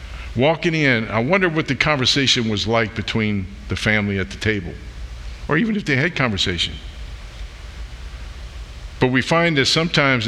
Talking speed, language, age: 150 wpm, English, 50-69